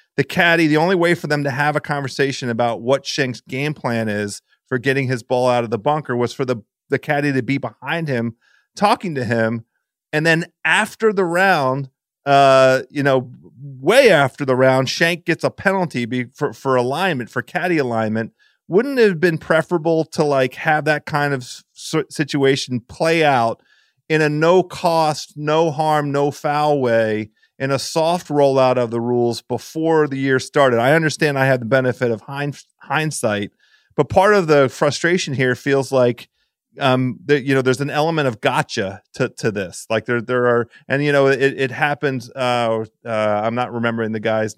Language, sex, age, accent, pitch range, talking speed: English, male, 40-59, American, 120-150 Hz, 185 wpm